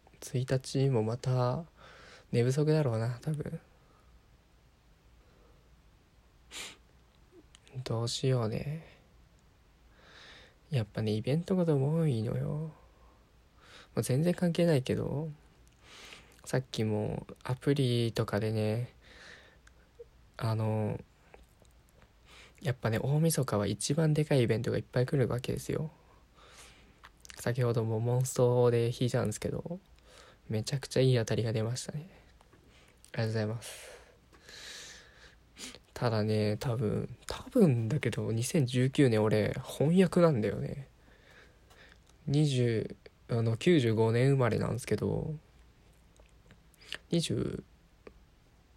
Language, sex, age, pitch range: Japanese, male, 20-39, 110-150 Hz